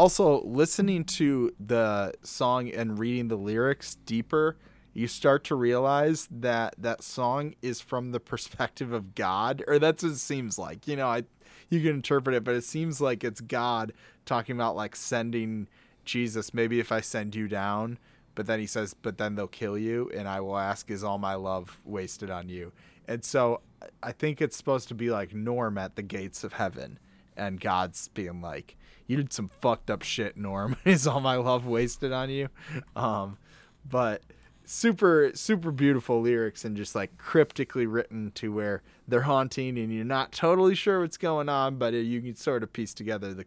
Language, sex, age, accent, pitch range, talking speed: English, male, 20-39, American, 105-135 Hz, 190 wpm